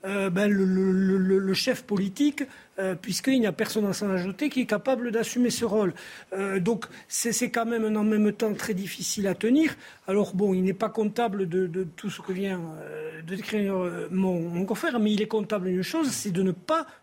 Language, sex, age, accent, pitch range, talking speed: French, male, 50-69, French, 195-250 Hz, 230 wpm